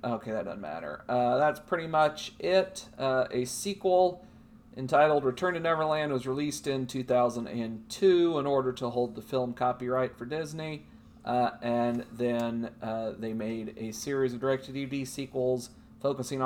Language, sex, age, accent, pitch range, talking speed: English, male, 40-59, American, 125-165 Hz, 155 wpm